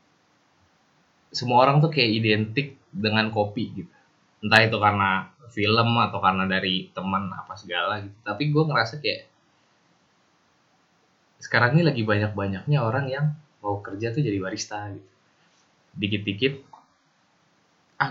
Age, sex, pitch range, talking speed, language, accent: 20-39, male, 105-140 Hz, 125 wpm, Indonesian, native